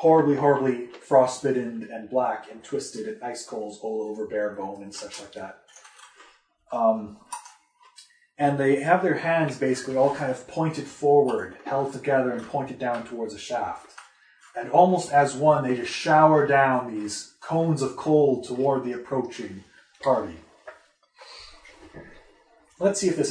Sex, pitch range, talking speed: male, 120-165 Hz, 150 wpm